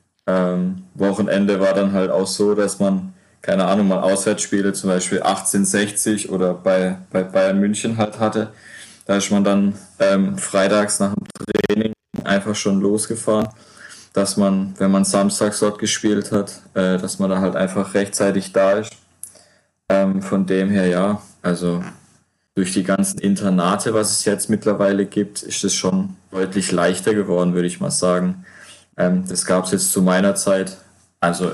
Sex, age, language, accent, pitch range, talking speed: male, 20-39, German, German, 95-105 Hz, 160 wpm